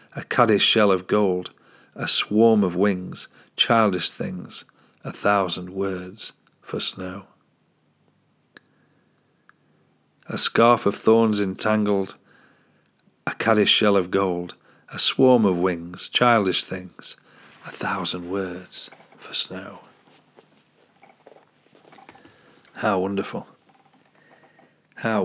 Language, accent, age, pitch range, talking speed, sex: English, British, 50-69, 95-110 Hz, 95 wpm, male